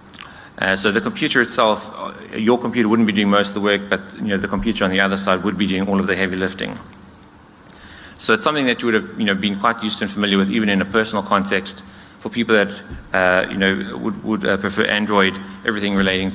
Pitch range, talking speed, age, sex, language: 95-105 Hz, 240 wpm, 30-49, male, English